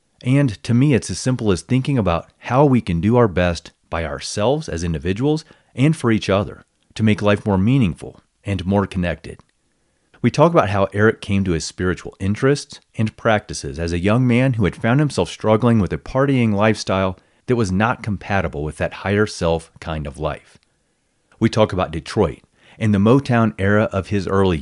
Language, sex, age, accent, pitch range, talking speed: English, male, 40-59, American, 90-120 Hz, 190 wpm